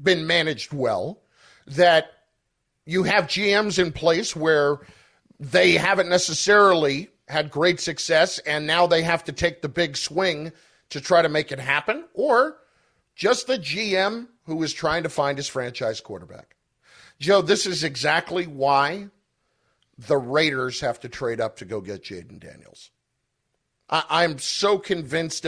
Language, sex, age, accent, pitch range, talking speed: English, male, 50-69, American, 145-190 Hz, 150 wpm